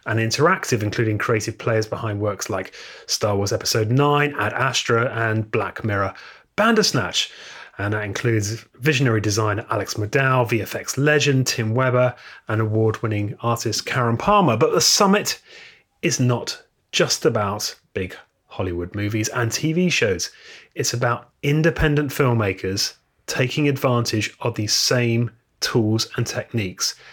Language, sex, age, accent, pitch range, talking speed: English, male, 30-49, British, 115-140 Hz, 130 wpm